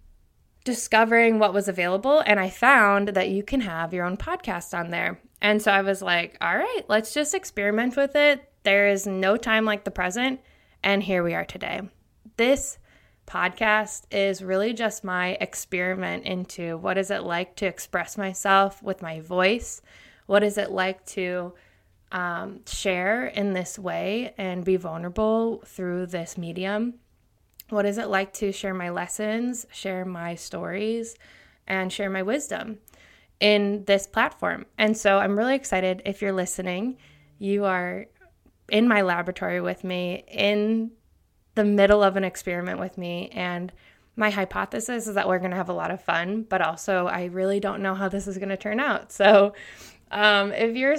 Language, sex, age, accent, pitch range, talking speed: English, female, 20-39, American, 185-215 Hz, 170 wpm